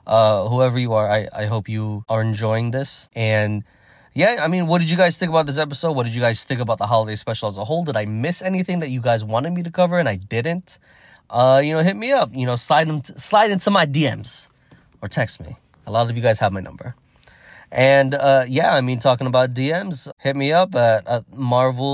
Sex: male